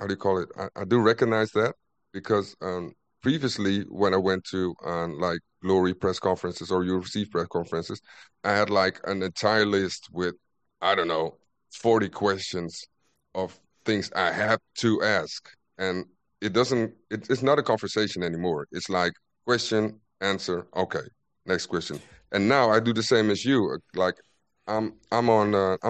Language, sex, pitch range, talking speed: English, male, 90-110 Hz, 170 wpm